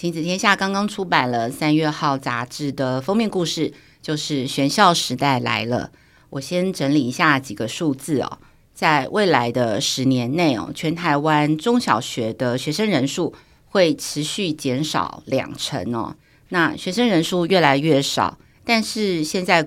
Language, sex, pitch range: Chinese, female, 135-175 Hz